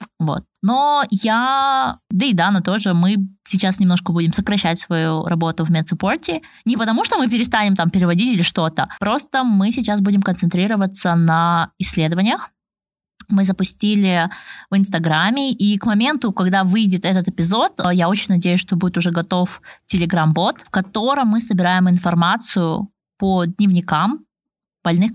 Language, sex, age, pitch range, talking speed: Russian, female, 20-39, 175-215 Hz, 145 wpm